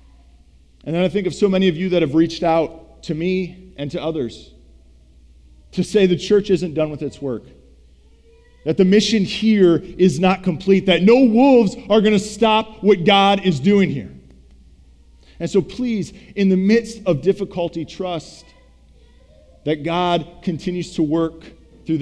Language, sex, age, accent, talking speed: English, male, 40-59, American, 165 wpm